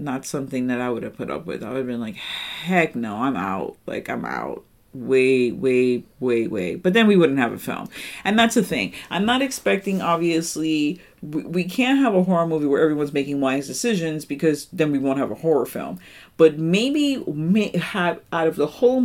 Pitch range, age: 145-220 Hz, 40-59